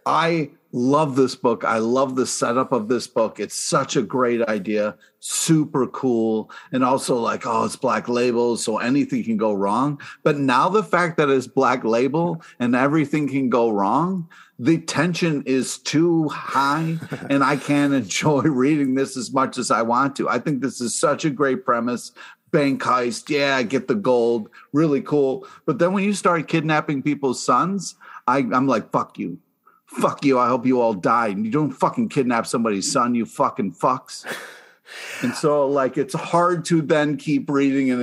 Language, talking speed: English, 185 wpm